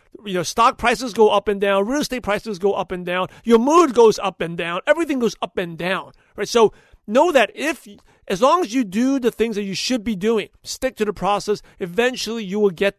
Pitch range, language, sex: 195-235 Hz, English, male